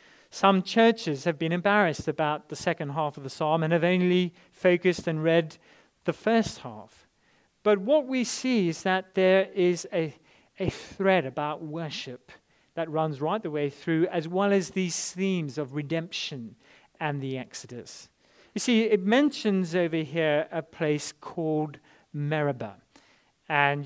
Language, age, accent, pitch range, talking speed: English, 40-59, British, 150-190 Hz, 155 wpm